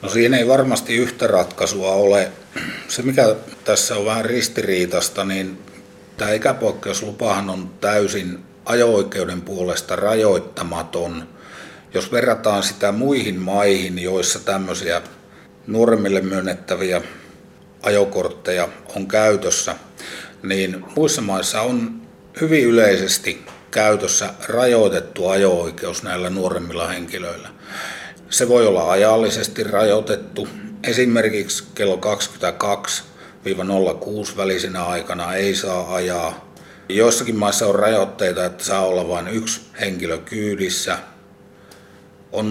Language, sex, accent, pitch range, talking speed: Finnish, male, native, 95-105 Hz, 100 wpm